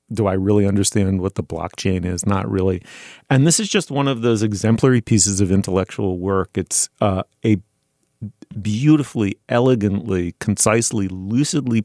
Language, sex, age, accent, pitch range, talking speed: English, male, 40-59, American, 95-120 Hz, 145 wpm